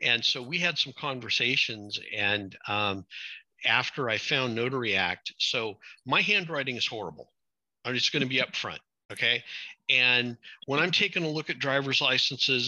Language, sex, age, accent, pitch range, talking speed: English, male, 50-69, American, 110-140 Hz, 155 wpm